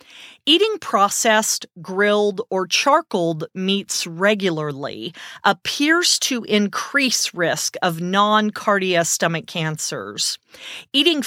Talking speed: 85 wpm